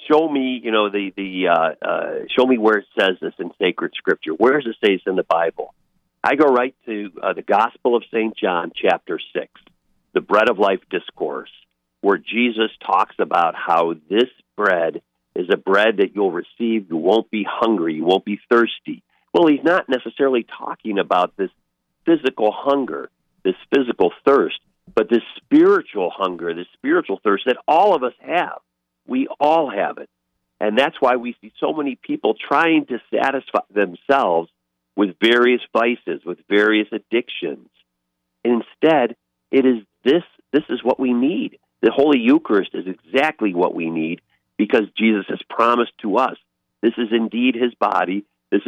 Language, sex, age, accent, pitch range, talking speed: English, male, 50-69, American, 95-125 Hz, 170 wpm